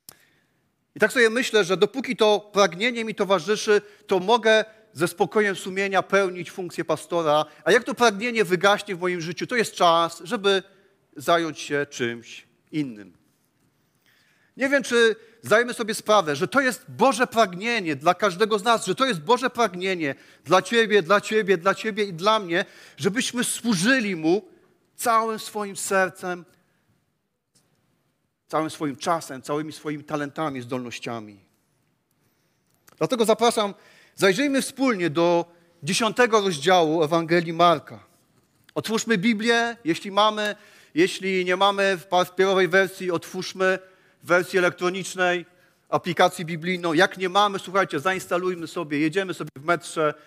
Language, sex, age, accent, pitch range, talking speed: Polish, male, 40-59, native, 155-210 Hz, 130 wpm